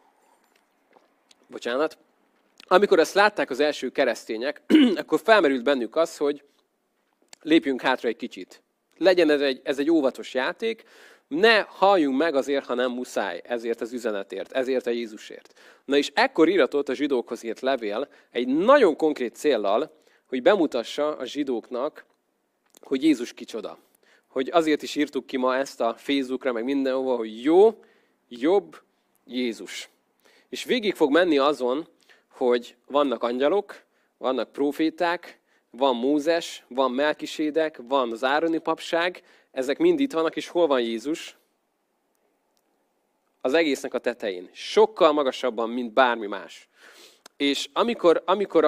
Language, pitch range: Hungarian, 130-175 Hz